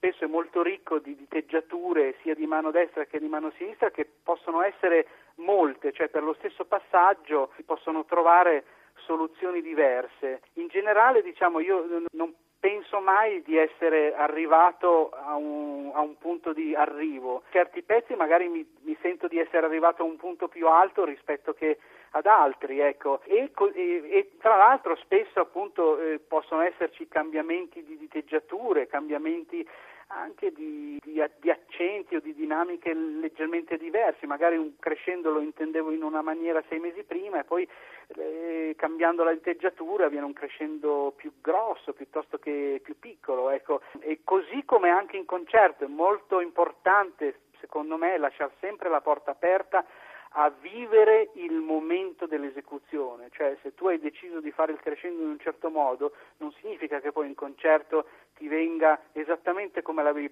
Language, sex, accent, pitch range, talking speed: Italian, male, native, 155-220 Hz, 155 wpm